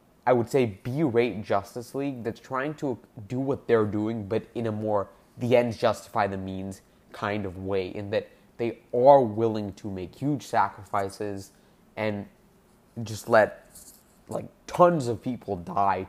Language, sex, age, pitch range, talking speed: English, male, 20-39, 105-130 Hz, 155 wpm